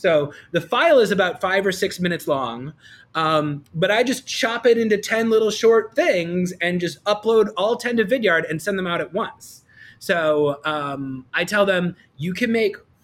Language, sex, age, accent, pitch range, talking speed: English, male, 30-49, American, 155-225 Hz, 195 wpm